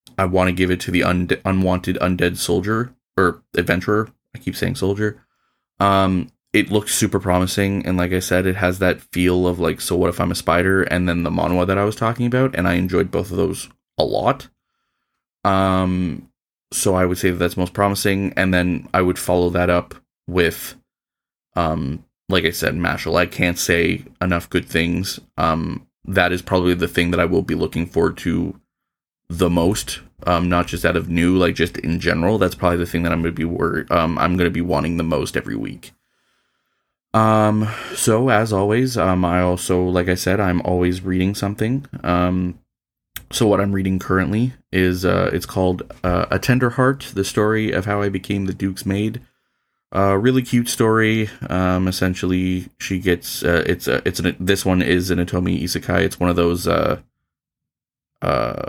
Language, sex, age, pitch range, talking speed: English, male, 20-39, 90-100 Hz, 195 wpm